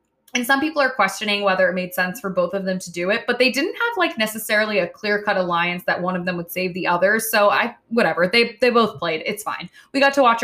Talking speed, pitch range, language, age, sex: 270 wpm, 185-240 Hz, English, 20-39, female